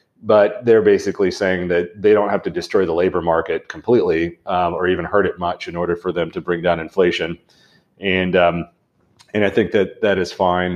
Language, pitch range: English, 85-100 Hz